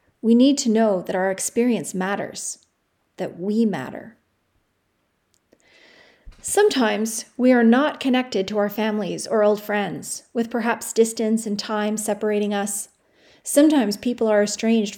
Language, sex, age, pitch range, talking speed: English, female, 30-49, 205-250 Hz, 130 wpm